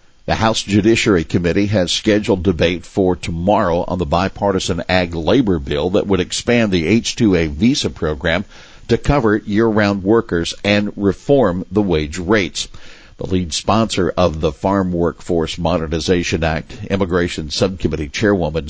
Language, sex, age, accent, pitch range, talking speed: English, male, 60-79, American, 85-105 Hz, 135 wpm